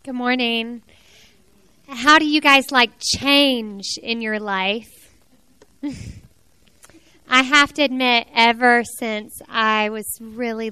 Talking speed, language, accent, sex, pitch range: 110 wpm, English, American, female, 215-255 Hz